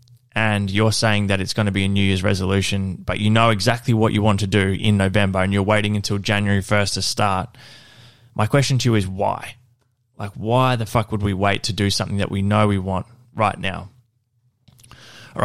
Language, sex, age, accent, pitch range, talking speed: English, male, 20-39, Australian, 100-120 Hz, 215 wpm